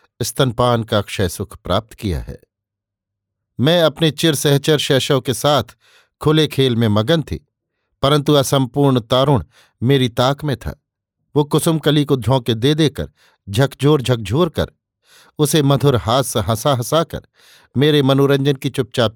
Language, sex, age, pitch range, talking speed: Hindi, male, 50-69, 115-145 Hz, 145 wpm